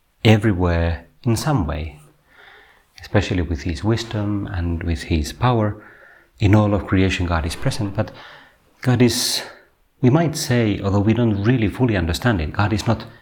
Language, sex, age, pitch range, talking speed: Finnish, male, 40-59, 85-110 Hz, 160 wpm